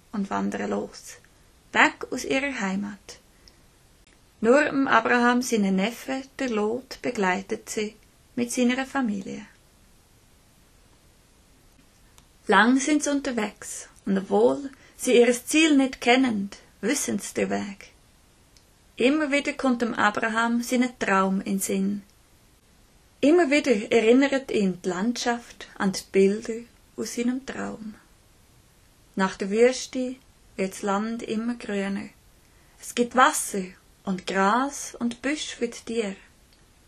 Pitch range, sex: 195-255 Hz, female